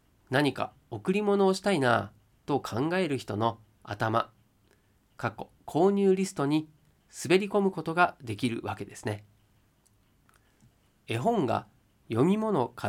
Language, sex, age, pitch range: Japanese, male, 40-59, 105-150 Hz